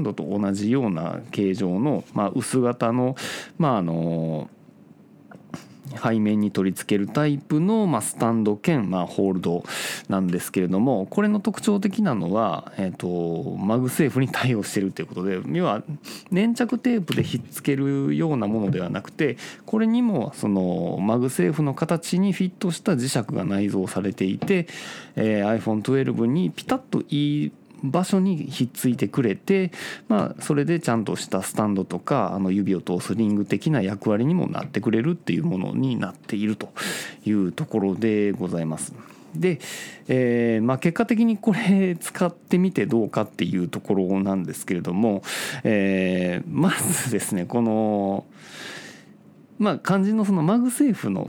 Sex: male